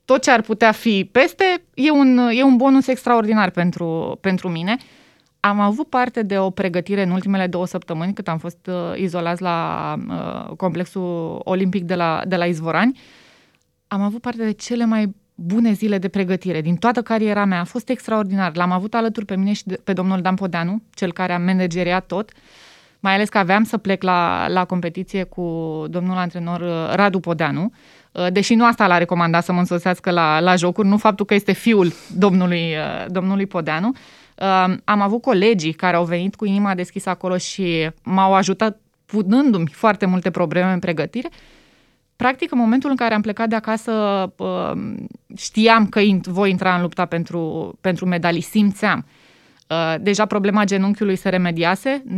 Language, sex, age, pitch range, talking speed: Romanian, female, 20-39, 175-215 Hz, 170 wpm